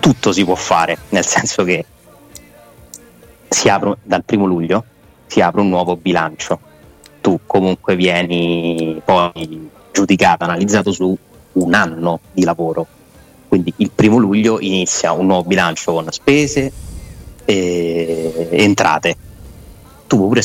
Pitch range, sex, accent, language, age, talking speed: 85-100 Hz, male, native, Italian, 30-49, 120 wpm